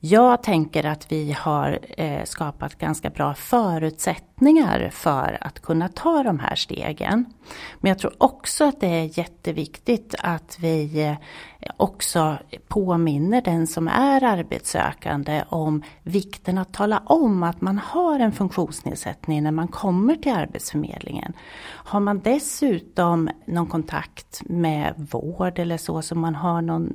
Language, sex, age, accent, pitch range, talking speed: Swedish, female, 40-59, native, 160-205 Hz, 135 wpm